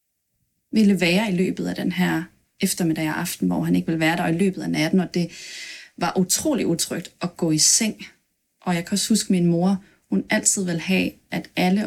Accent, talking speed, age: native, 210 wpm, 30-49